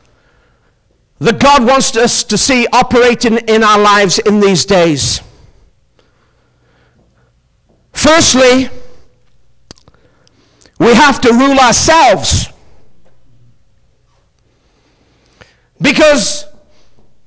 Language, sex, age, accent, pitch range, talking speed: English, male, 50-69, British, 235-285 Hz, 70 wpm